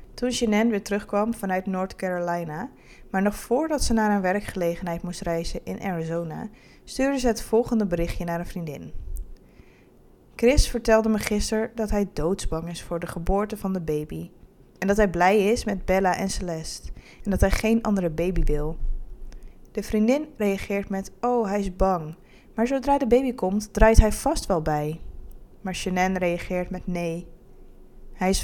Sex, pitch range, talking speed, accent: female, 175-220 Hz, 170 wpm, Dutch